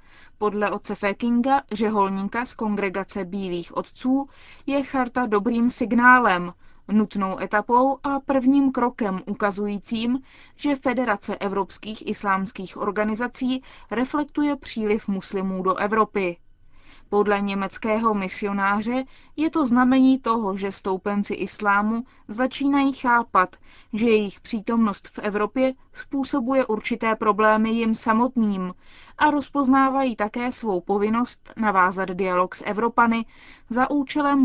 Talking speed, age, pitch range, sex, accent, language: 105 wpm, 20-39, 205-255 Hz, female, native, Czech